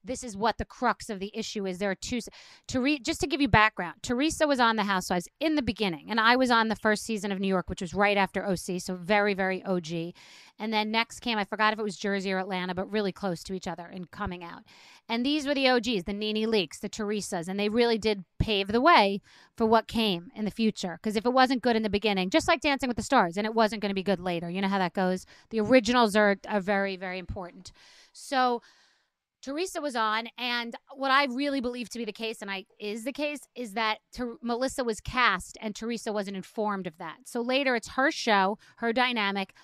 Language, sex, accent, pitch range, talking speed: English, female, American, 195-245 Hz, 240 wpm